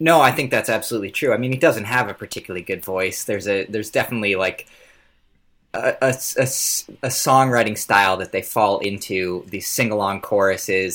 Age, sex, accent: 20-39, male, American